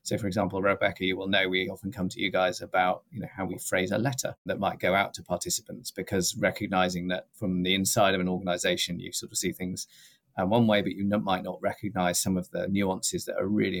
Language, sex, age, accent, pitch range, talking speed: English, male, 30-49, British, 95-110 Hz, 245 wpm